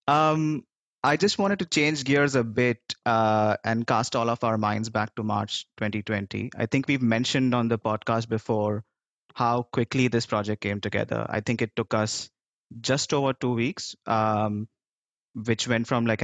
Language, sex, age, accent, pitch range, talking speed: English, male, 20-39, Indian, 110-125 Hz, 175 wpm